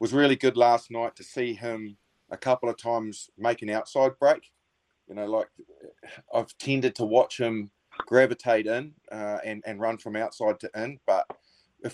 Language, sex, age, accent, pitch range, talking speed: English, male, 30-49, Australian, 105-120 Hz, 180 wpm